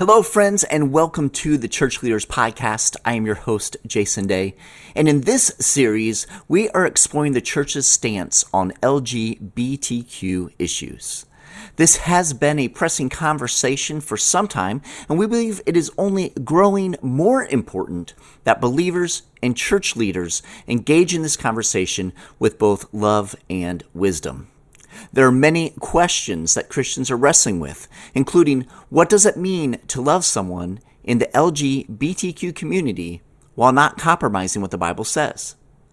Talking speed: 145 wpm